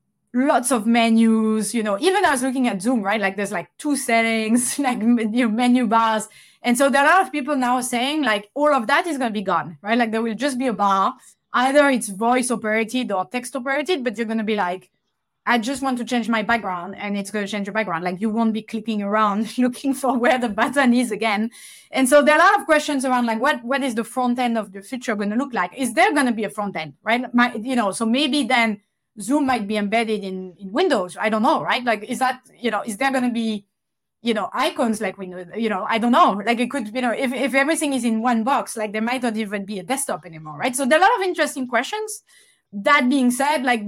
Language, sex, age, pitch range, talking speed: English, female, 30-49, 220-265 Hz, 265 wpm